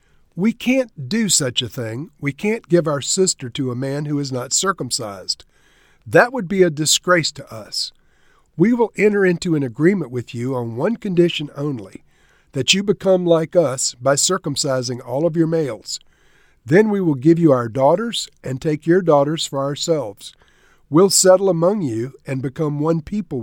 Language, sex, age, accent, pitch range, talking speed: English, male, 50-69, American, 130-180 Hz, 175 wpm